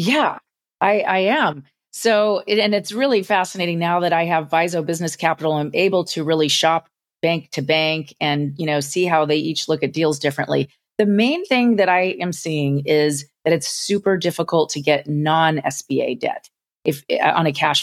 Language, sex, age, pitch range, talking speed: English, female, 30-49, 155-195 Hz, 190 wpm